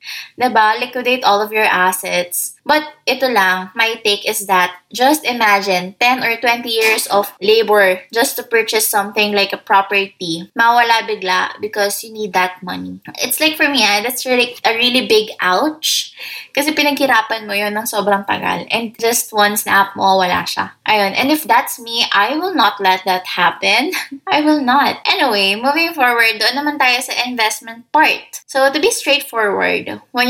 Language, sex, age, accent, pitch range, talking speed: English, female, 20-39, Filipino, 200-260 Hz, 175 wpm